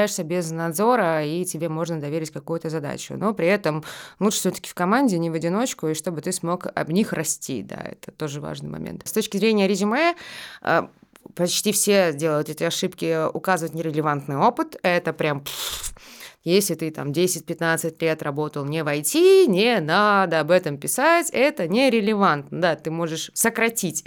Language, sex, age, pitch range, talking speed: Russian, female, 20-39, 165-220 Hz, 155 wpm